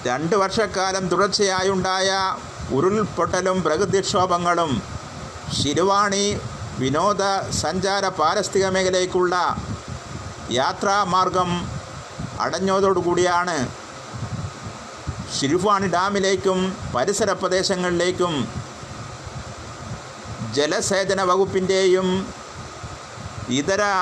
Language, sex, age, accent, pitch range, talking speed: Malayalam, male, 50-69, native, 155-190 Hz, 45 wpm